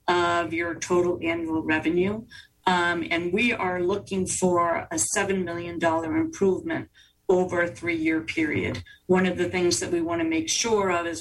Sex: female